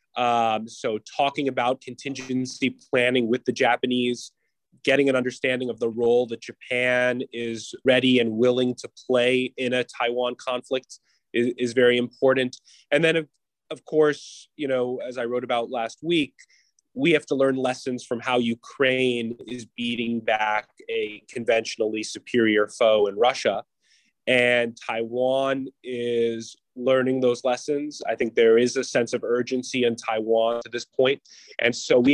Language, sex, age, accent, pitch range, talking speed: English, male, 20-39, American, 115-130 Hz, 155 wpm